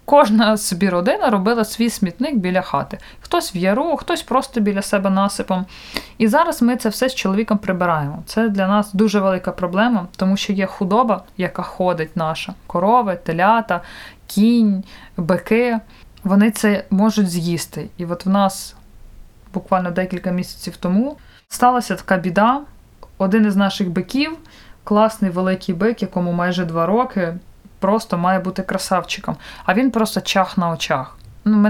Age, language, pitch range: 20-39, Ukrainian, 185-220 Hz